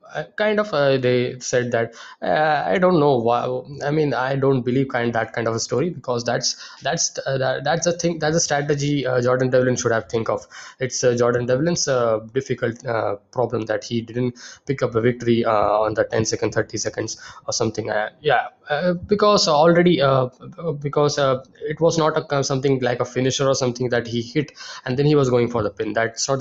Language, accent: English, Indian